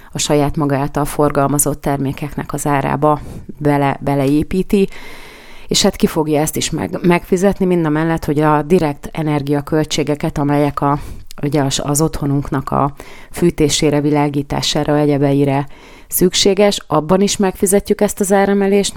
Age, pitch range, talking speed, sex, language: 30-49, 145-175 Hz, 125 wpm, female, Hungarian